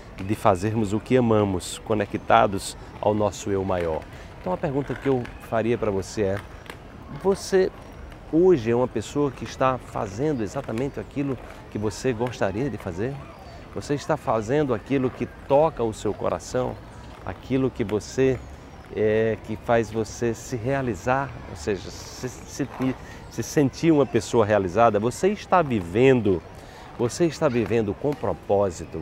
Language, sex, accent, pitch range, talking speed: Portuguese, male, Brazilian, 105-145 Hz, 140 wpm